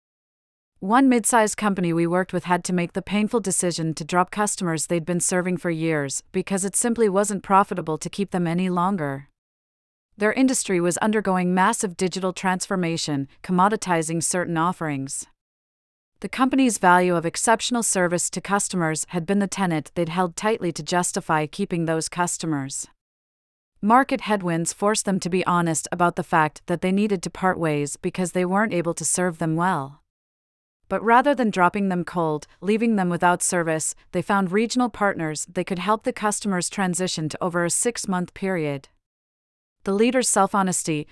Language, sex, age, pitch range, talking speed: English, female, 40-59, 165-200 Hz, 165 wpm